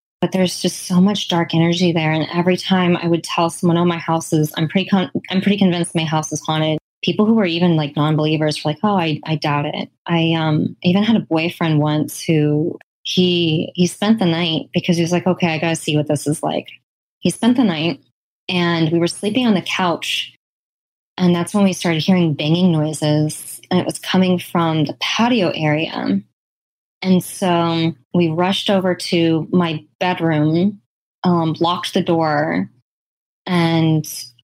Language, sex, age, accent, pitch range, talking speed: English, female, 20-39, American, 155-180 Hz, 190 wpm